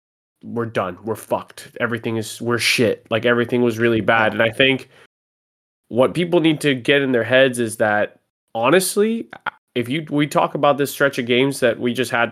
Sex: male